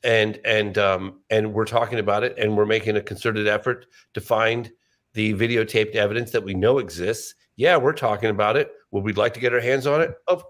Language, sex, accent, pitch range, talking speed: English, male, American, 105-145 Hz, 215 wpm